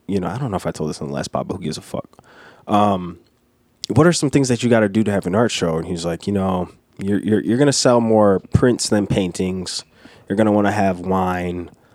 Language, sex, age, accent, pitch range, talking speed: English, male, 20-39, American, 90-110 Hz, 270 wpm